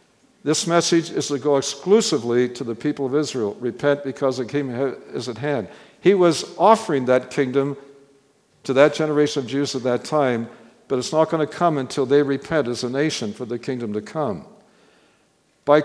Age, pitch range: 60-79, 135-185 Hz